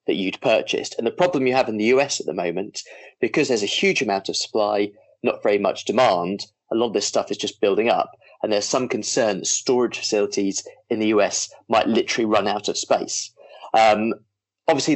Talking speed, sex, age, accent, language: 210 wpm, male, 30-49, British, English